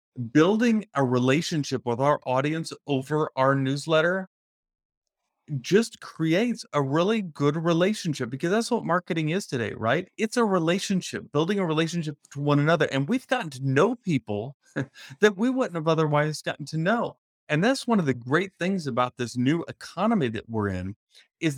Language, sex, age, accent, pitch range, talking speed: English, male, 30-49, American, 130-190 Hz, 165 wpm